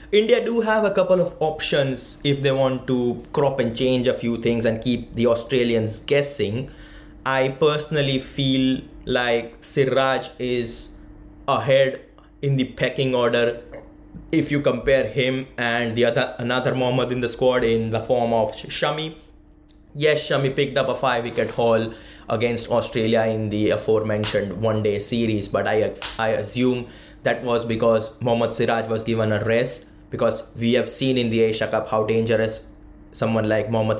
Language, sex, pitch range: English, male, 110-130 Hz